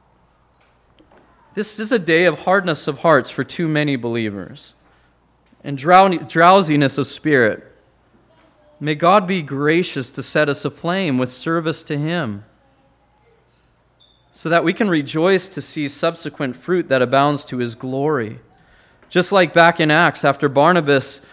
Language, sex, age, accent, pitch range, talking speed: English, male, 20-39, American, 135-170 Hz, 140 wpm